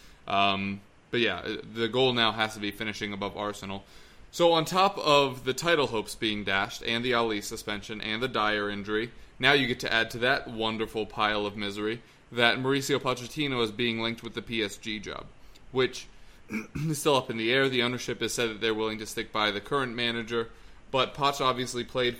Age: 20-39